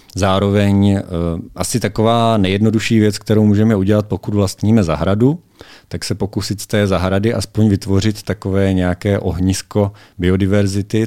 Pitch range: 90-100 Hz